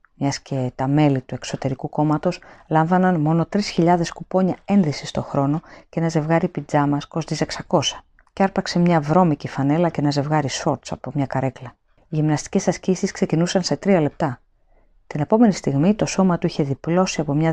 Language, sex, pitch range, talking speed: Greek, female, 140-180 Hz, 170 wpm